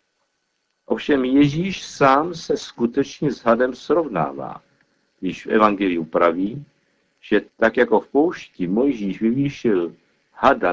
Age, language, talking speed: 50-69, Czech, 110 wpm